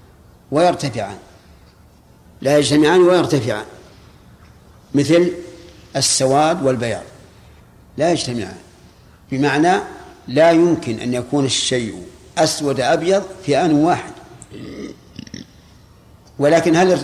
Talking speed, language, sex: 75 wpm, Arabic, male